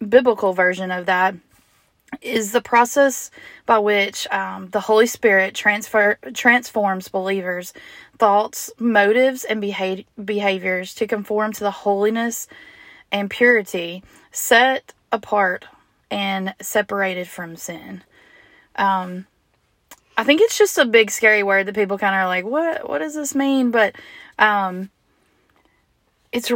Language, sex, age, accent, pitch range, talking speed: English, female, 20-39, American, 190-230 Hz, 125 wpm